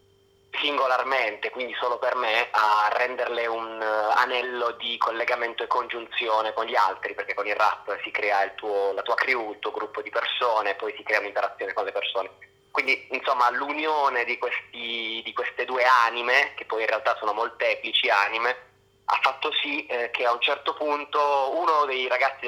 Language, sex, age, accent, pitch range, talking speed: Italian, male, 20-39, native, 110-145 Hz, 180 wpm